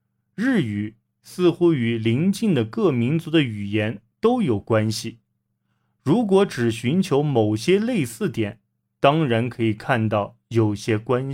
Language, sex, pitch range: Chinese, male, 110-170 Hz